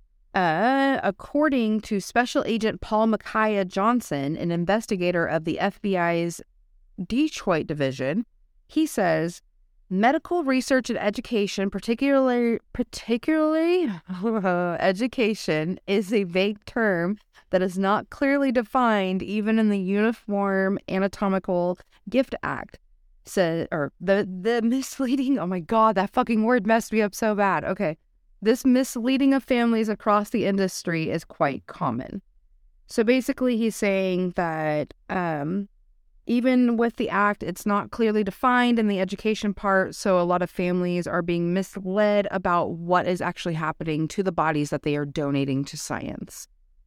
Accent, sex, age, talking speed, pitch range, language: American, female, 30-49, 135 wpm, 175-225 Hz, English